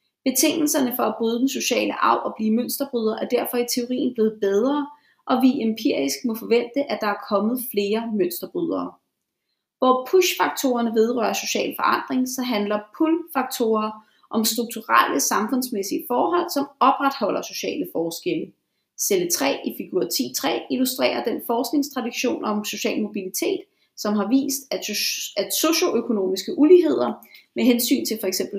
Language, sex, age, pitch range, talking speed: Danish, female, 30-49, 210-280 Hz, 135 wpm